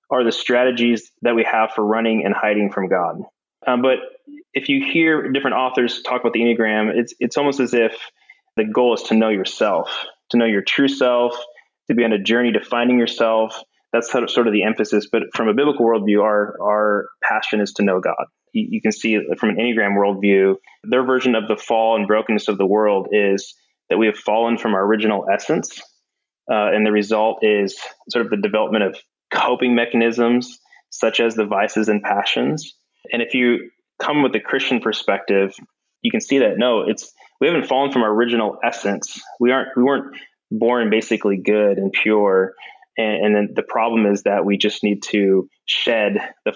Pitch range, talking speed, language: 105-120 Hz, 200 wpm, English